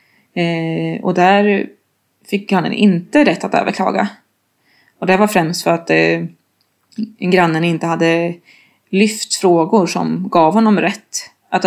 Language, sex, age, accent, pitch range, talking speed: Swedish, female, 20-39, native, 170-205 Hz, 135 wpm